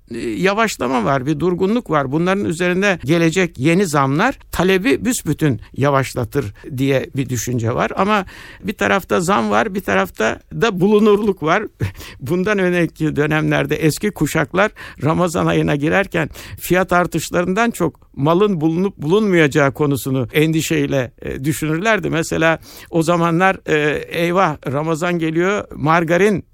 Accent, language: native, Turkish